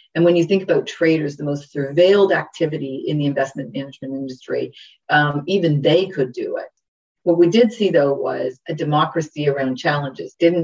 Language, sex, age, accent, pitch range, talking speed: English, female, 40-59, American, 145-170 Hz, 180 wpm